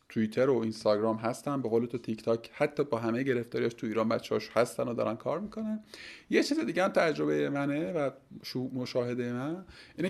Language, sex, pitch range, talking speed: Persian, male, 120-165 Hz, 185 wpm